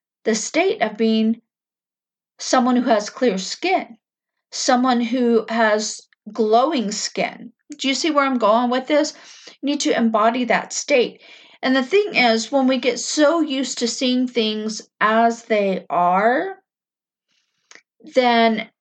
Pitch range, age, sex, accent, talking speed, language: 220-260 Hz, 50-69, female, American, 140 wpm, English